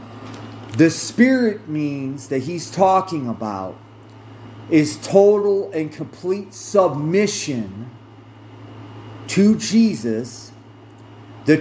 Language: English